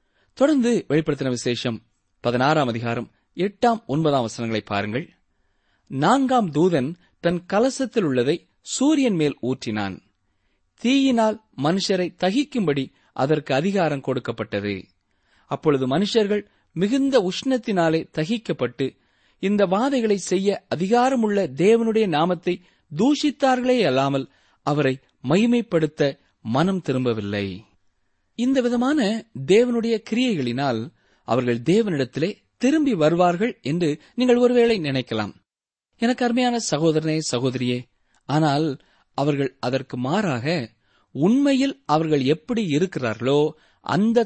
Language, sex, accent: Tamil, male, native